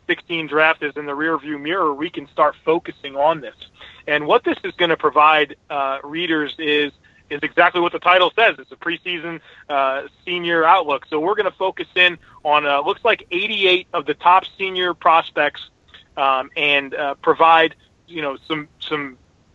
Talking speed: 180 wpm